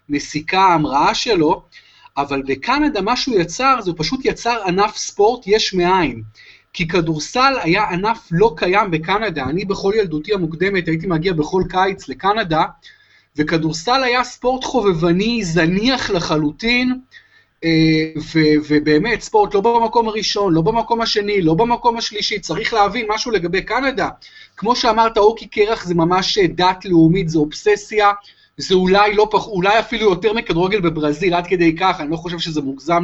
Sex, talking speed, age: male, 145 wpm, 30-49